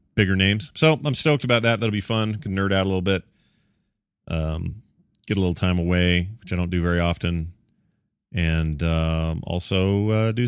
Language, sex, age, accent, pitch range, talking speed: English, male, 30-49, American, 85-115 Hz, 190 wpm